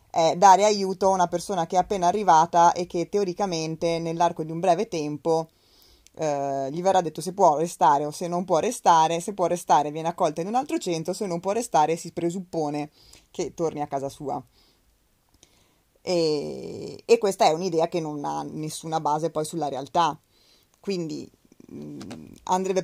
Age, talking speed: 20-39, 170 wpm